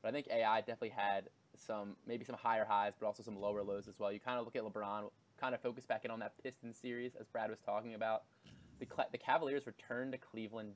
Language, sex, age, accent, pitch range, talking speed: English, male, 20-39, American, 110-125 Hz, 245 wpm